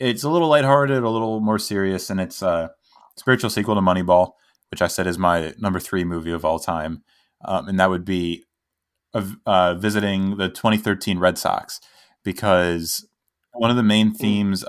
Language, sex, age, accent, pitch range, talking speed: English, male, 20-39, American, 85-105 Hz, 175 wpm